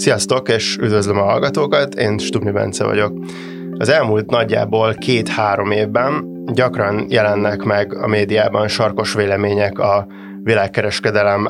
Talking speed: 120 wpm